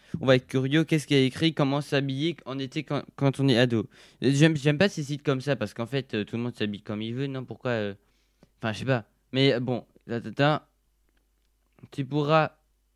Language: French